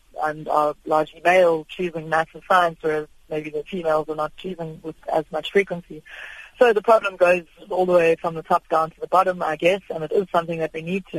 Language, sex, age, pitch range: English, female, 20-39, 160-180 Hz